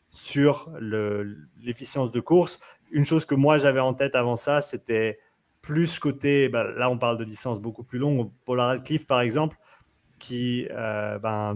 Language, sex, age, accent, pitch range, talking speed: French, male, 30-49, French, 115-135 Hz, 170 wpm